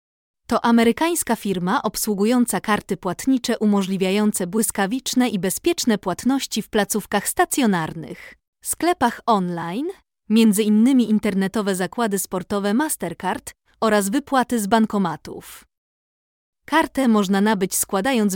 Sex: female